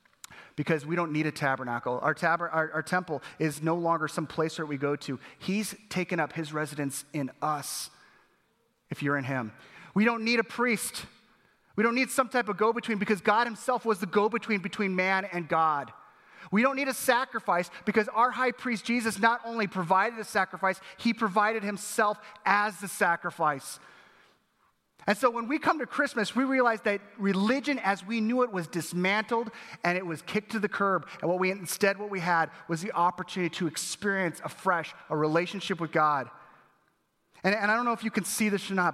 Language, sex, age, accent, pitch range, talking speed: English, male, 30-49, American, 170-240 Hz, 195 wpm